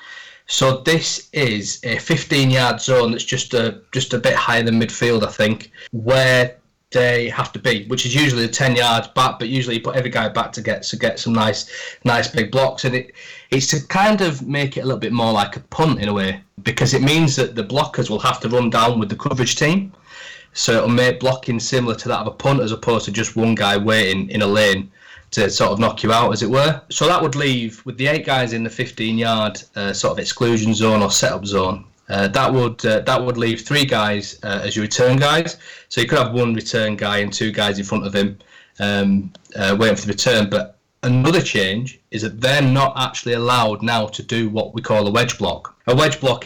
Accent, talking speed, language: British, 235 wpm, English